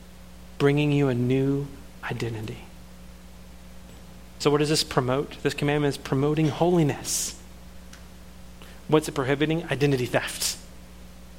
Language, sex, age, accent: English, male, 40-59, American